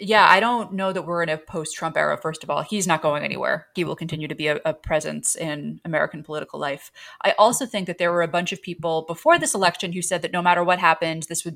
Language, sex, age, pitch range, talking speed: English, female, 30-49, 160-190 Hz, 265 wpm